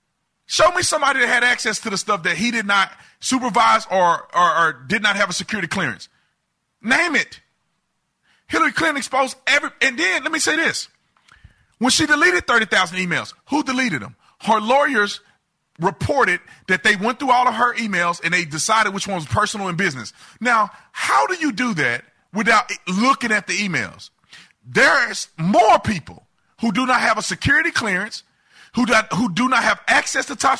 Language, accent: English, American